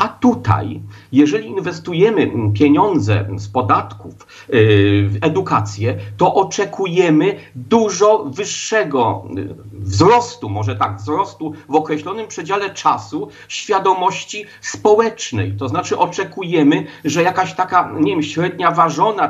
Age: 40-59